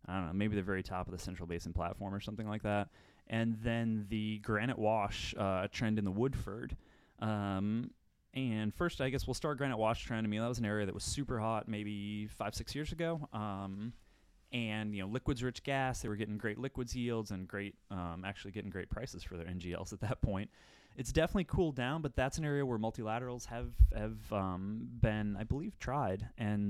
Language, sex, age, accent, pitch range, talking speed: English, male, 20-39, American, 100-130 Hz, 210 wpm